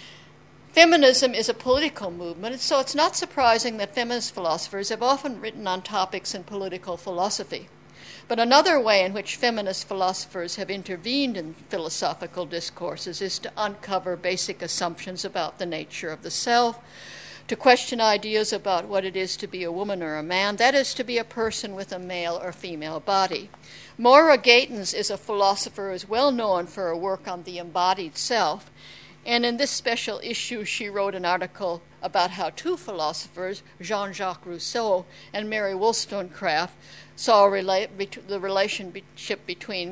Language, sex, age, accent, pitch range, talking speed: English, female, 60-79, American, 180-230 Hz, 160 wpm